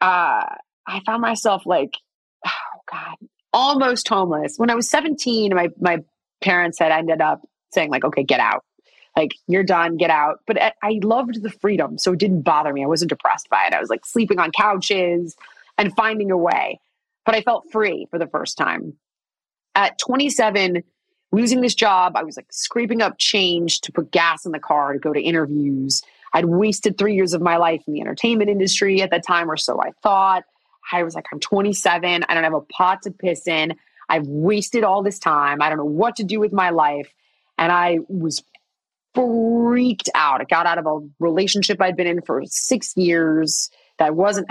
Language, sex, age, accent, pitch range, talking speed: English, female, 30-49, American, 165-220 Hz, 200 wpm